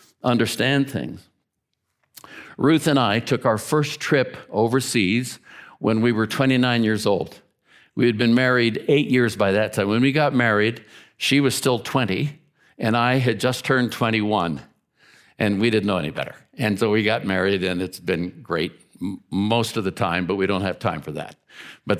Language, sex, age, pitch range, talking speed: English, male, 60-79, 105-140 Hz, 180 wpm